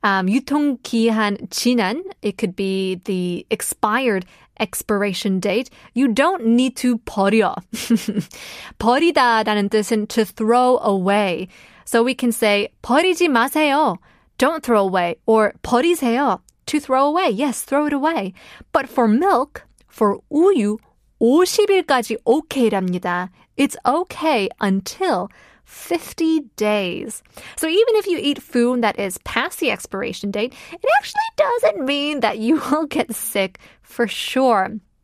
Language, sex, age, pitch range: Korean, female, 20-39, 200-275 Hz